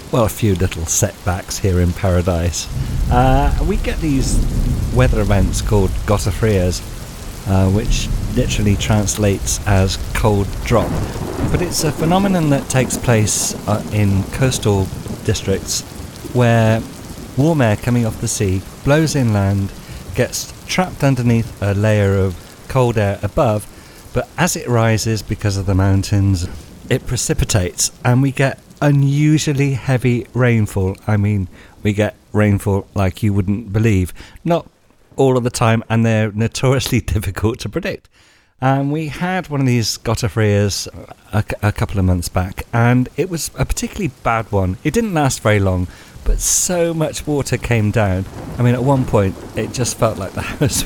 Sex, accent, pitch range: male, British, 100-125 Hz